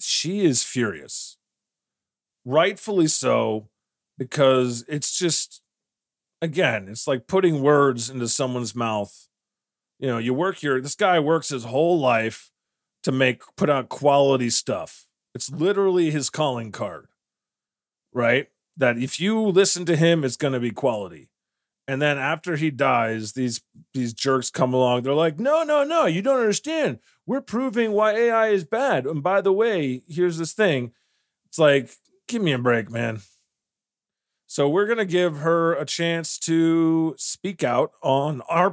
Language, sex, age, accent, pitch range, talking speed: English, male, 30-49, American, 125-175 Hz, 155 wpm